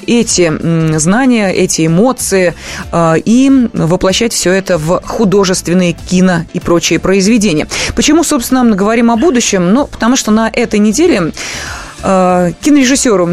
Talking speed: 120 wpm